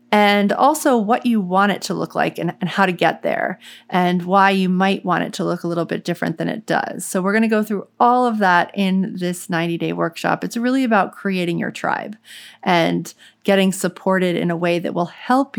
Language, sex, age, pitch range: English, female, 30-49, 180-210 Hz